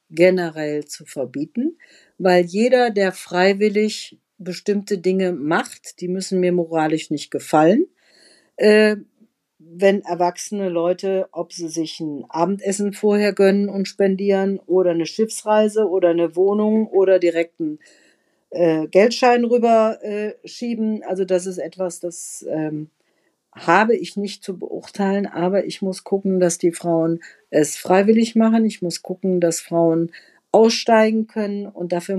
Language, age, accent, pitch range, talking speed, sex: German, 50-69, German, 170-205 Hz, 130 wpm, female